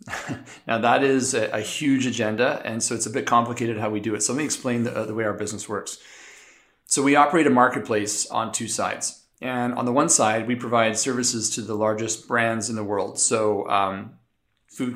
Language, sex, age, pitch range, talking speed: English, male, 40-59, 110-125 Hz, 210 wpm